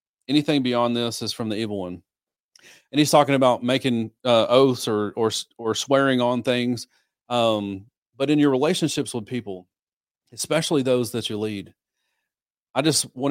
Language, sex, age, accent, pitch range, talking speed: English, male, 40-59, American, 115-135 Hz, 160 wpm